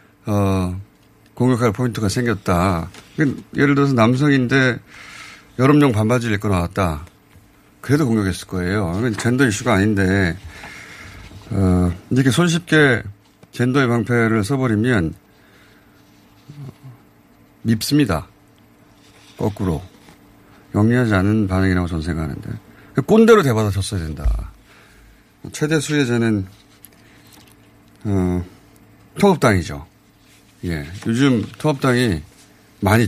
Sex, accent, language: male, native, Korean